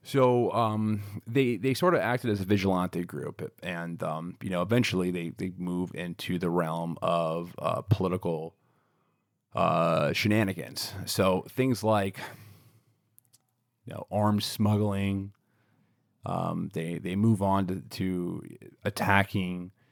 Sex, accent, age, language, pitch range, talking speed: male, American, 30-49, English, 90-110 Hz, 125 wpm